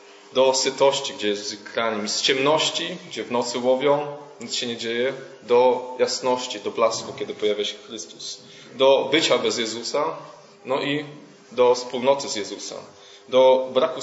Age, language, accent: 20-39, Polish, native